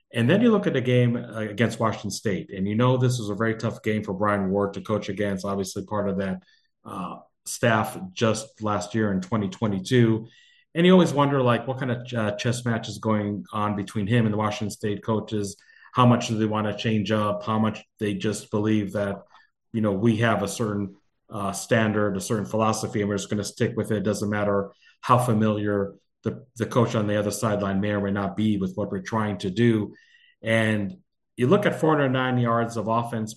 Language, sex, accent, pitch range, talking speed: English, male, American, 105-120 Hz, 220 wpm